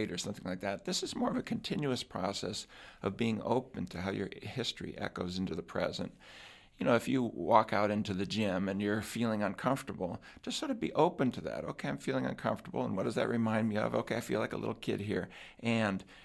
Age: 60-79